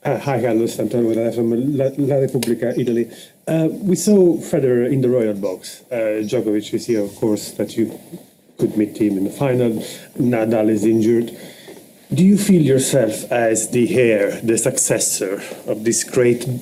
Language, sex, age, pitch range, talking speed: English, male, 40-59, 115-125 Hz, 165 wpm